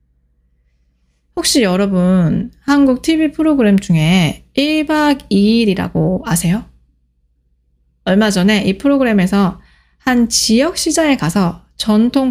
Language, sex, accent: Korean, female, native